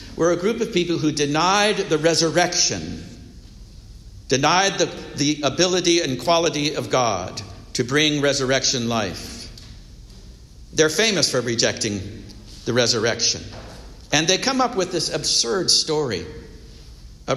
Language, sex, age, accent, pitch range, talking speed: English, male, 60-79, American, 115-175 Hz, 125 wpm